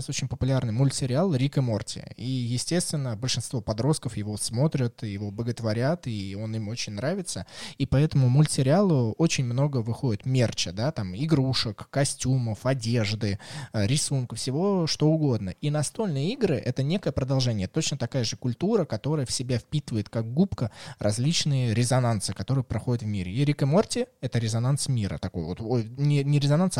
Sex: male